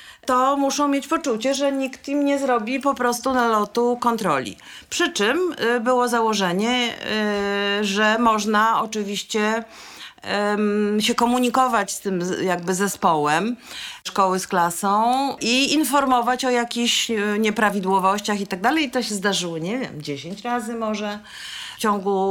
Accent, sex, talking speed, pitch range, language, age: native, female, 130 wpm, 195-245 Hz, Polish, 40-59